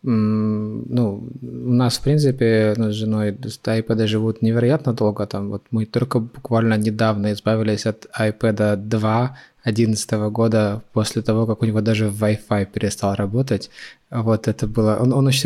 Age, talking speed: 20-39, 145 wpm